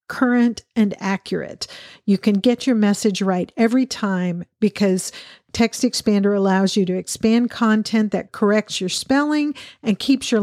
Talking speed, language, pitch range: 150 wpm, English, 195-230 Hz